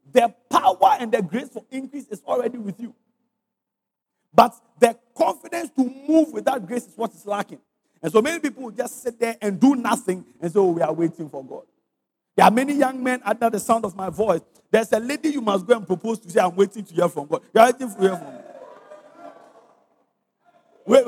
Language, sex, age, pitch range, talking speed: English, male, 50-69, 210-270 Hz, 210 wpm